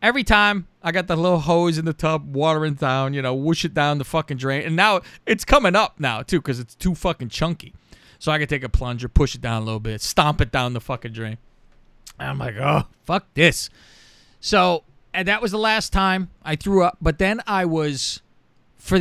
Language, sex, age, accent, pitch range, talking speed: English, male, 30-49, American, 135-190 Hz, 225 wpm